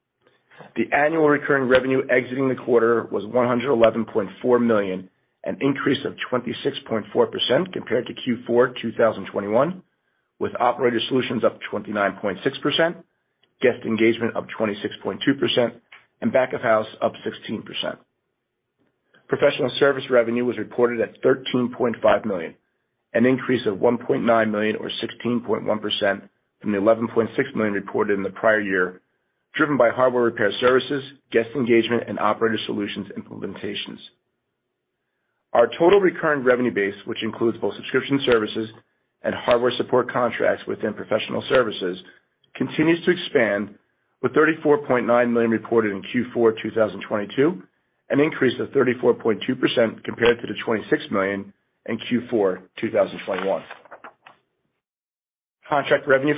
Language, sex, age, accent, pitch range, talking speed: English, male, 40-59, American, 105-130 Hz, 150 wpm